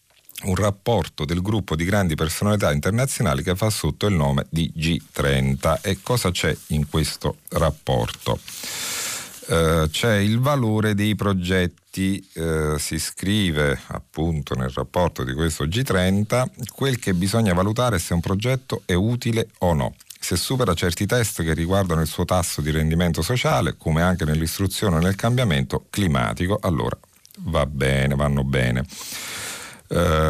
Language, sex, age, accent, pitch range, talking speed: Italian, male, 40-59, native, 80-105 Hz, 140 wpm